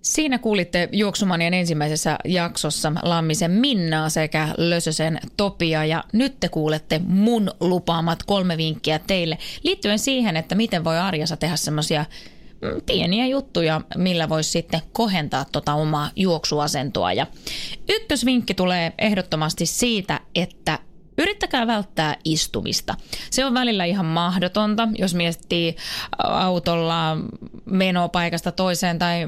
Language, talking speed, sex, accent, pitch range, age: Finnish, 115 wpm, female, native, 160-215 Hz, 20-39